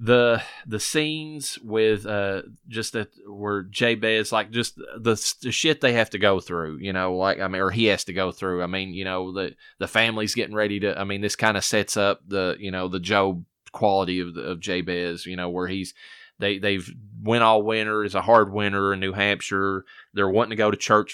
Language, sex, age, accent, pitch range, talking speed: English, male, 20-39, American, 95-105 Hz, 220 wpm